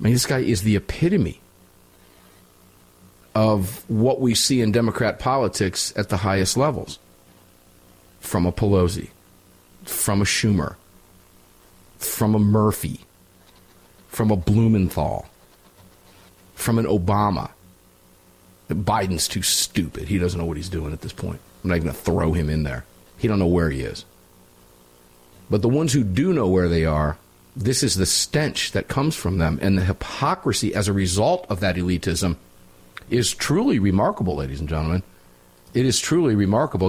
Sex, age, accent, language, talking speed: male, 40-59, American, English, 155 wpm